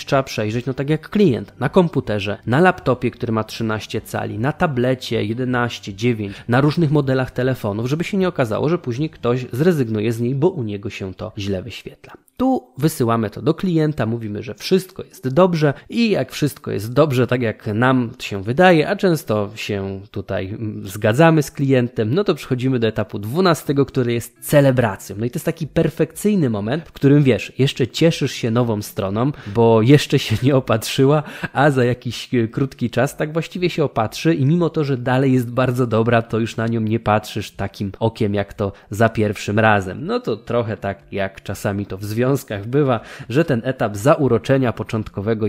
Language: Polish